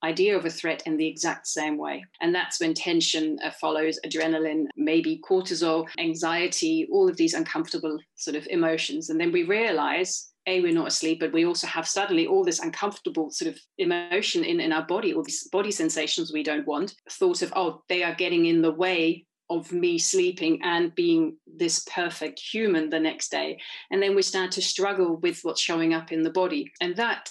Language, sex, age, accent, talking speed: English, female, 30-49, British, 200 wpm